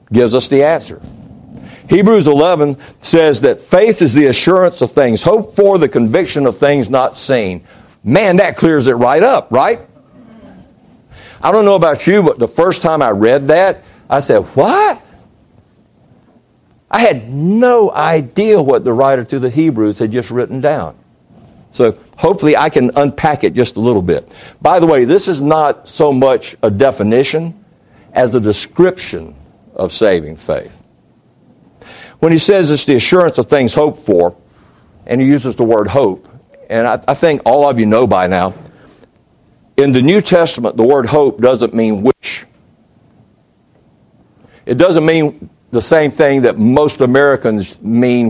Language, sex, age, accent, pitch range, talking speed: English, male, 60-79, American, 120-160 Hz, 160 wpm